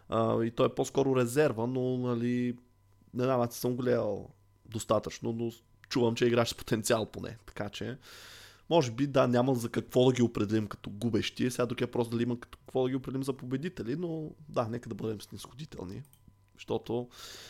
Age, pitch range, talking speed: 20-39, 105-125 Hz, 180 wpm